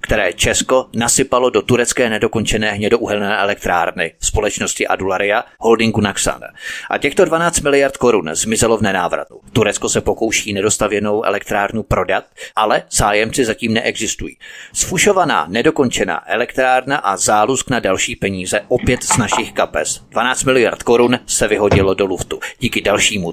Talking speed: 130 wpm